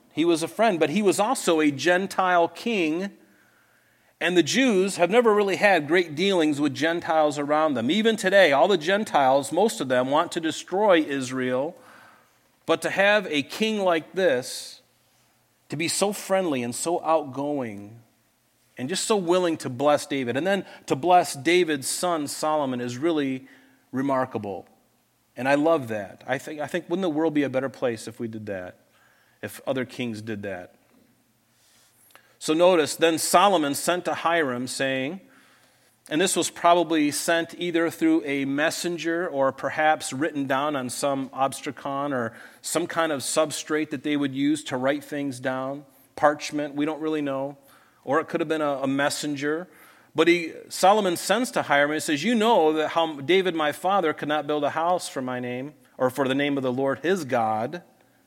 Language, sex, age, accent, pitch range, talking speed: English, male, 40-59, American, 135-175 Hz, 180 wpm